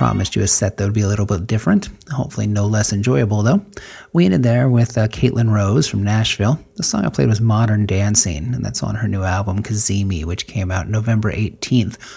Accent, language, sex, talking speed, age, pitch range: American, English, male, 215 wpm, 40-59, 95-115 Hz